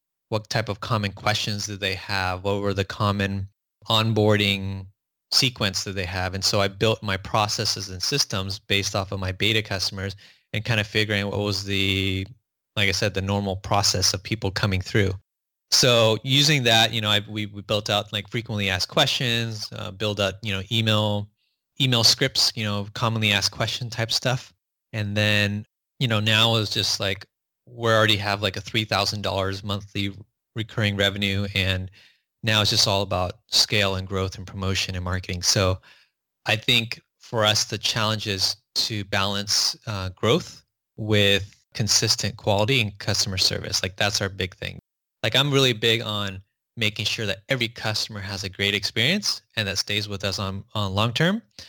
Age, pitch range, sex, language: 20-39, 100-110 Hz, male, English